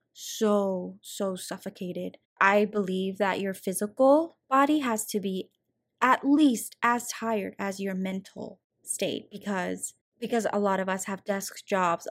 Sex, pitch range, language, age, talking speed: female, 195-215 Hz, English, 20-39, 145 wpm